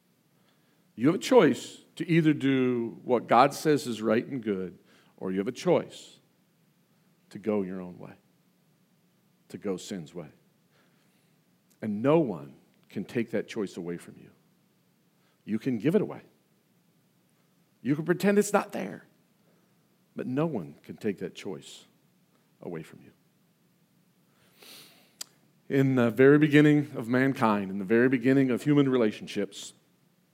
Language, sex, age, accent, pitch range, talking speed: English, male, 50-69, American, 120-175 Hz, 140 wpm